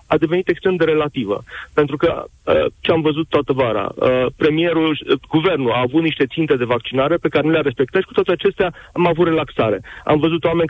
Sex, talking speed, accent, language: male, 190 wpm, native, Romanian